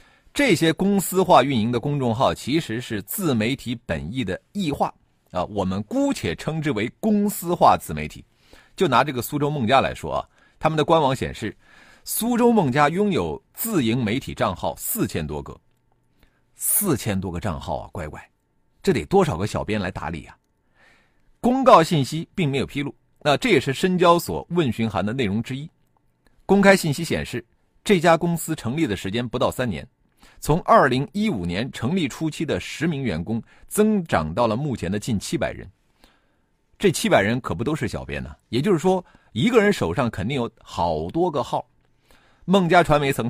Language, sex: Chinese, male